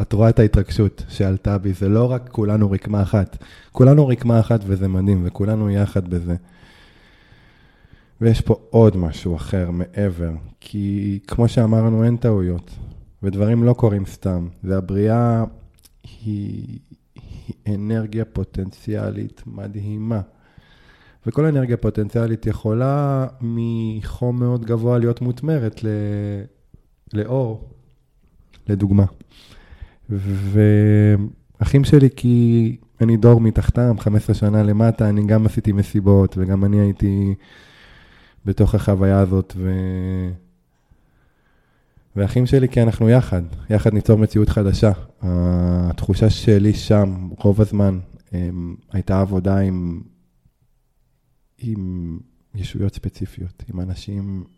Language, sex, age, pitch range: Hebrew, male, 20-39, 95-115 Hz